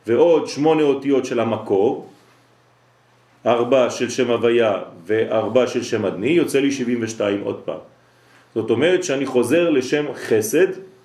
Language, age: French, 40-59